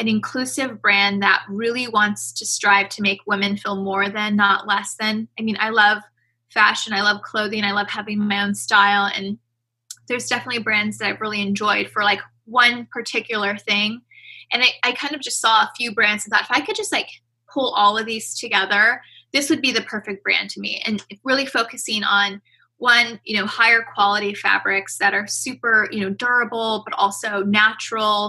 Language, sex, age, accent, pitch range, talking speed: English, female, 20-39, American, 200-230 Hz, 195 wpm